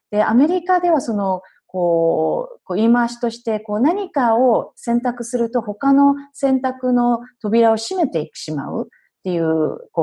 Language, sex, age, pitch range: Japanese, female, 40-59, 160-235 Hz